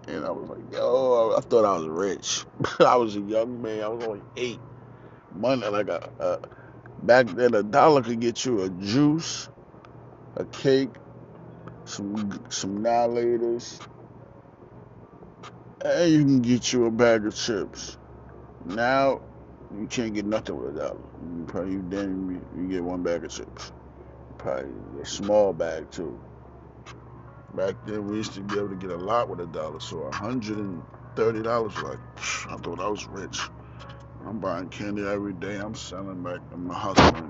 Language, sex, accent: English, male, American